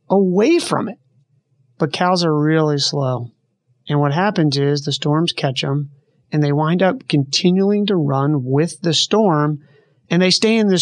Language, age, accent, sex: English, 30-49, American, male